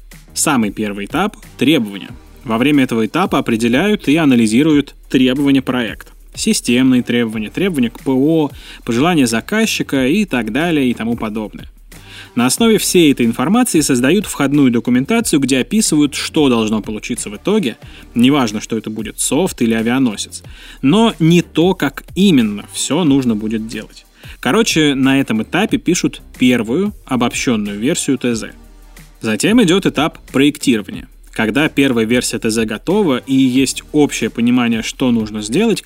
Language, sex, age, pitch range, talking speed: Russian, male, 20-39, 115-185 Hz, 135 wpm